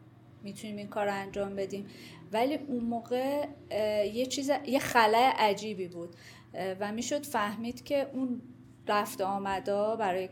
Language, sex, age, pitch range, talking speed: Persian, female, 30-49, 185-235 Hz, 130 wpm